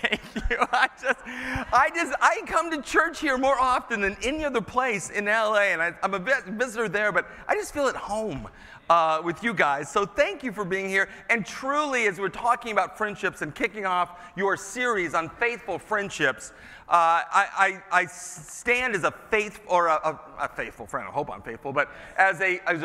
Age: 40-59